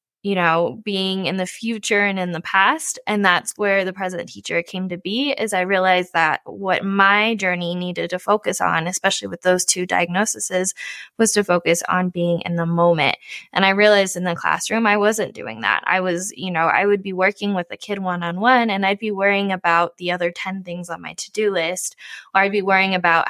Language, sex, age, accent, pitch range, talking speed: English, female, 10-29, American, 175-205 Hz, 215 wpm